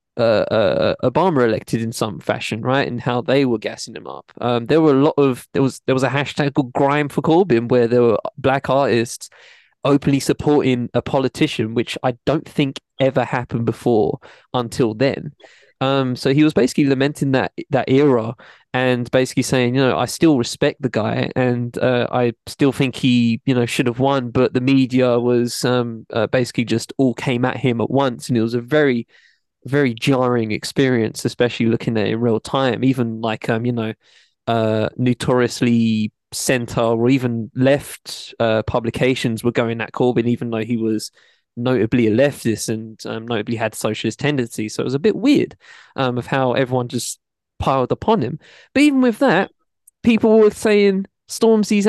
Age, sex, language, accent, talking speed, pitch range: 20-39, male, English, British, 185 wpm, 120-140 Hz